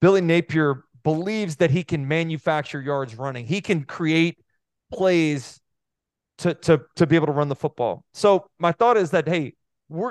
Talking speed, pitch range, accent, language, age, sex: 170 wpm, 145-175 Hz, American, English, 30-49, male